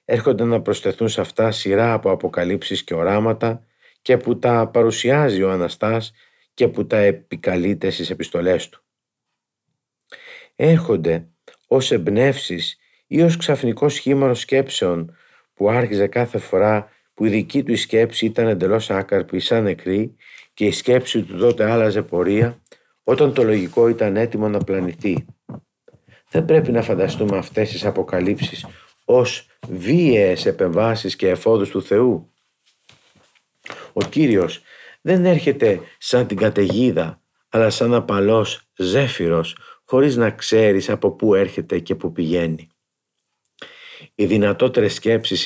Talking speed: 130 wpm